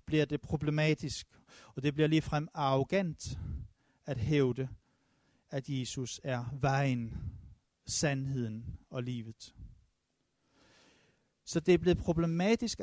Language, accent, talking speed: Danish, native, 110 wpm